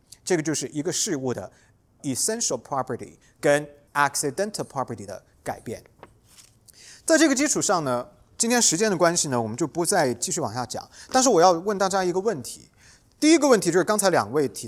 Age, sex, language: 30-49, male, English